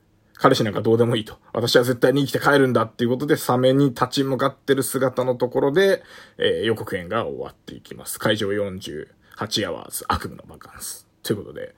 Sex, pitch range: male, 110-150 Hz